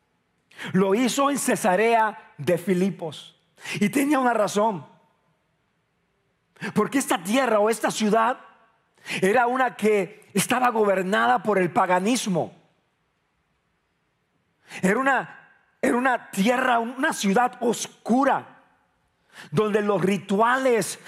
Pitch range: 195-250 Hz